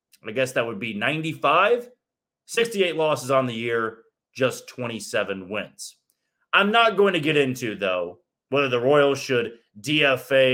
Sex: male